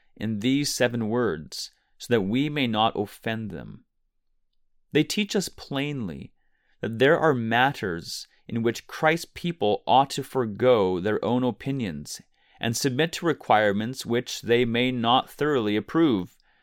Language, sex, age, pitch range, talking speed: English, male, 30-49, 105-140 Hz, 140 wpm